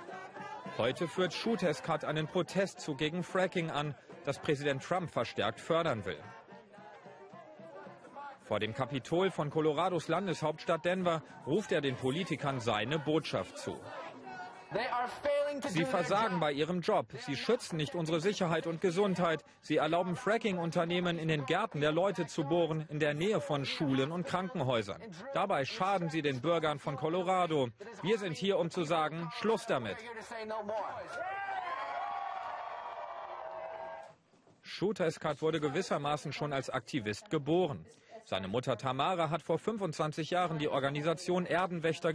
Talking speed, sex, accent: 130 wpm, male, German